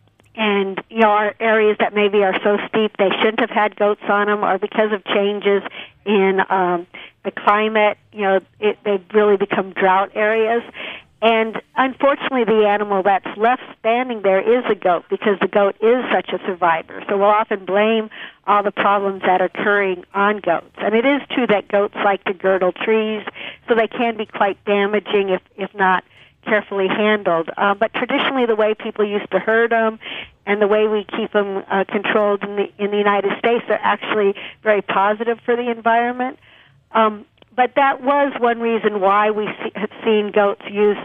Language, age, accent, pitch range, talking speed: English, 50-69, American, 195-225 Hz, 185 wpm